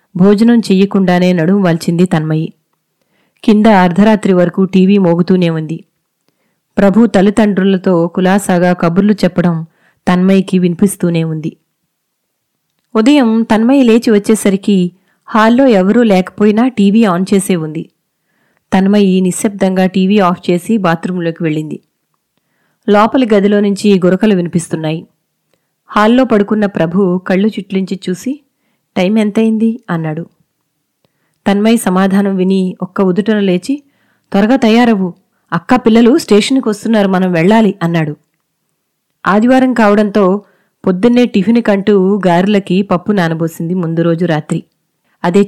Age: 20-39